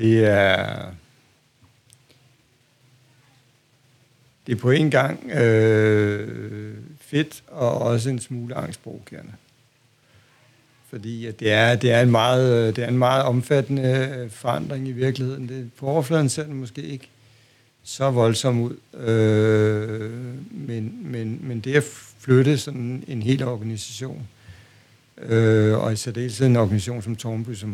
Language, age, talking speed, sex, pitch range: Danish, 60-79, 125 wpm, male, 110-130 Hz